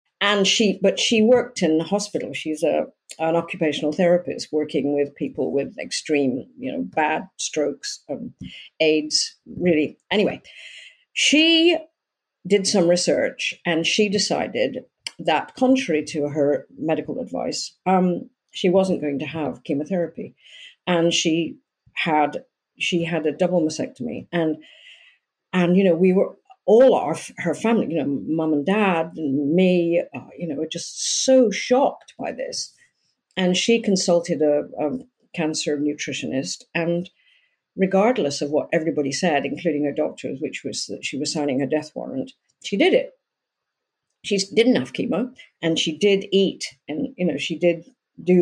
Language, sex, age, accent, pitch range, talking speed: English, female, 50-69, British, 155-230 Hz, 150 wpm